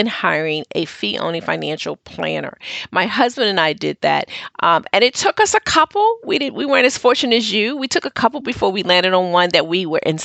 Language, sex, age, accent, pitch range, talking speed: English, female, 40-59, American, 175-255 Hz, 235 wpm